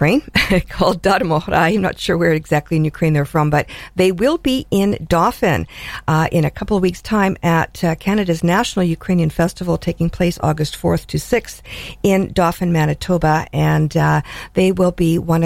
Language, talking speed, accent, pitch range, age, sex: English, 180 wpm, American, 155-190 Hz, 50-69, female